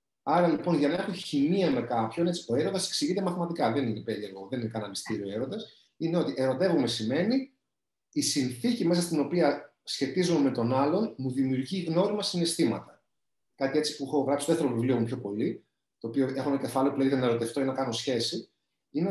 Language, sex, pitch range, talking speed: Greek, male, 130-190 Hz, 200 wpm